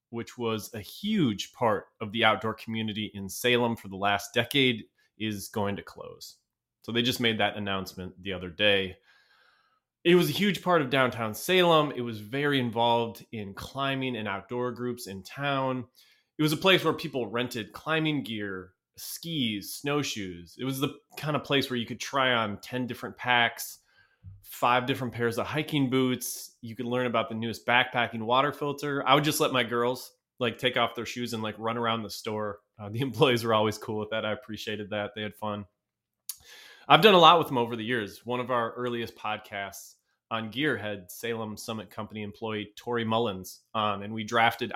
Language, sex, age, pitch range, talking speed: English, male, 20-39, 105-130 Hz, 195 wpm